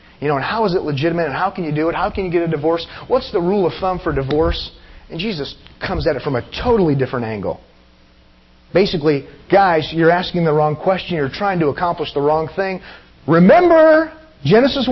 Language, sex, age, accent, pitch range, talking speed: English, male, 30-49, American, 130-195 Hz, 210 wpm